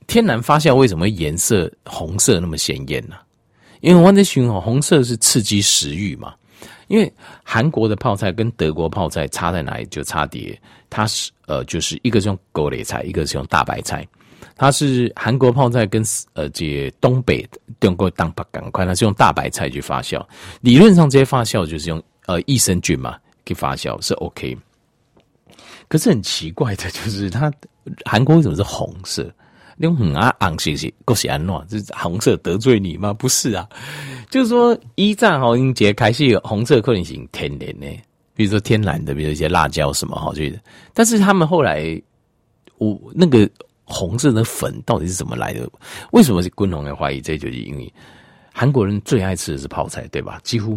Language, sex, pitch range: Chinese, male, 90-135 Hz